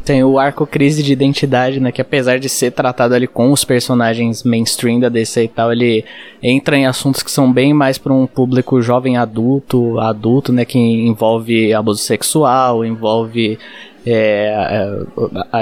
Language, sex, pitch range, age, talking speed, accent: Portuguese, male, 120-140 Hz, 20-39, 165 wpm, Brazilian